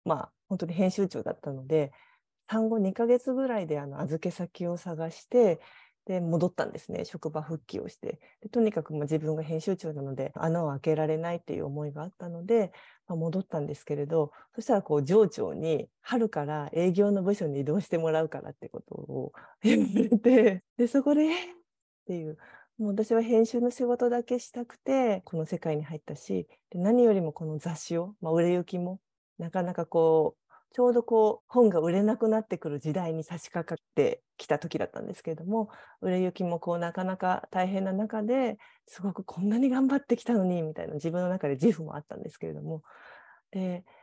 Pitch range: 160-225 Hz